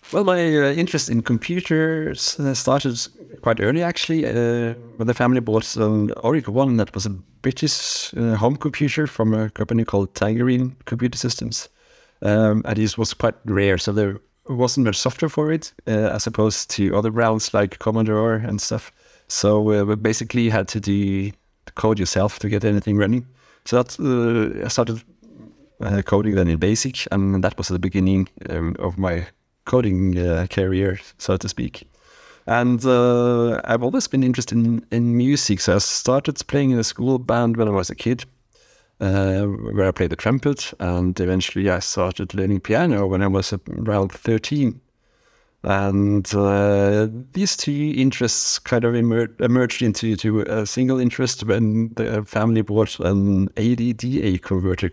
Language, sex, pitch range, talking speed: English, male, 100-125 Hz, 170 wpm